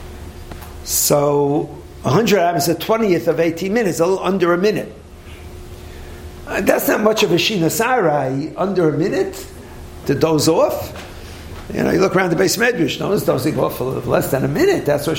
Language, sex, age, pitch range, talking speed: English, male, 50-69, 130-190 Hz, 180 wpm